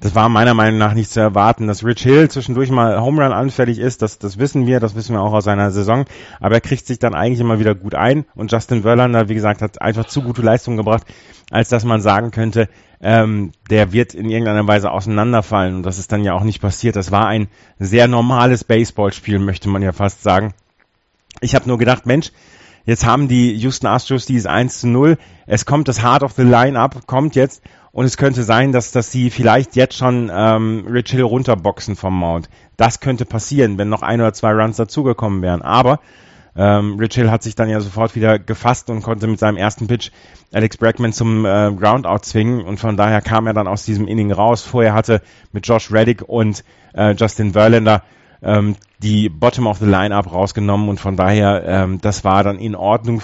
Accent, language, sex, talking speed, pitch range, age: German, German, male, 210 wpm, 105-120 Hz, 30-49